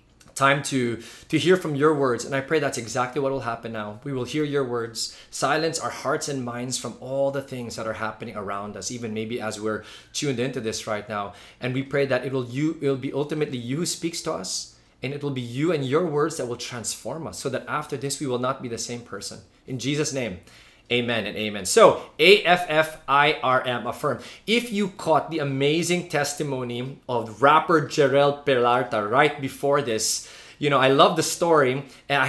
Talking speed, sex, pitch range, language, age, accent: 210 wpm, male, 120-165 Hz, English, 20-39, Filipino